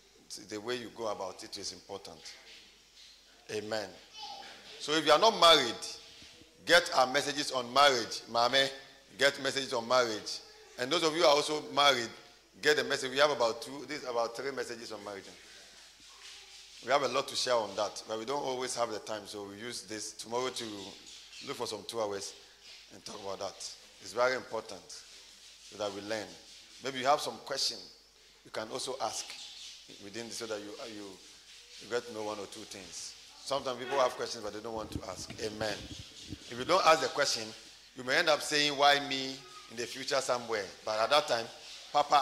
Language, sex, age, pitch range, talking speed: English, male, 40-59, 110-170 Hz, 200 wpm